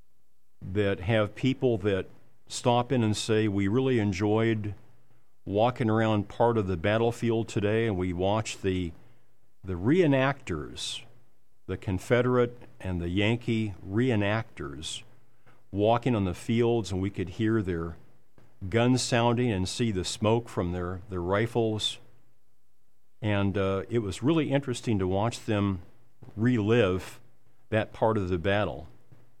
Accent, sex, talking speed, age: American, male, 130 wpm, 50-69